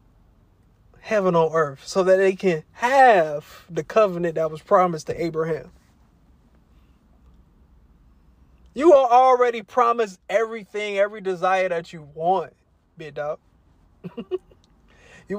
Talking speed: 110 wpm